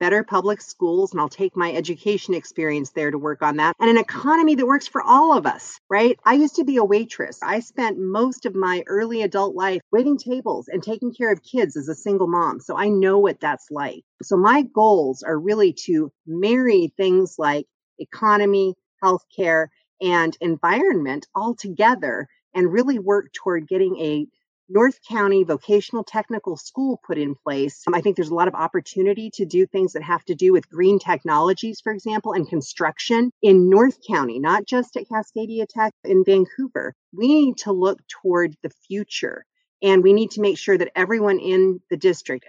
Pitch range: 170-225 Hz